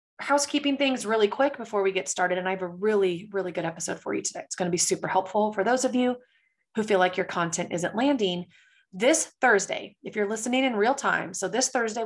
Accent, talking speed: American, 235 wpm